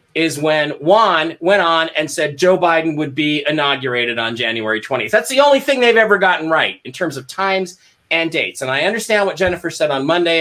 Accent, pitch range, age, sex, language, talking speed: American, 145-195 Hz, 30-49, male, English, 215 wpm